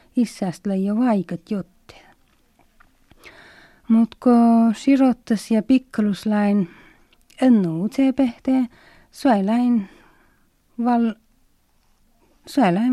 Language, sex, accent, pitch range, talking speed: Finnish, female, native, 190-245 Hz, 60 wpm